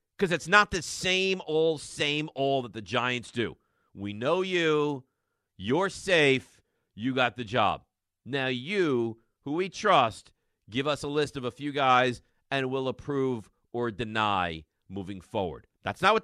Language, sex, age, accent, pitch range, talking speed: English, male, 50-69, American, 105-155 Hz, 165 wpm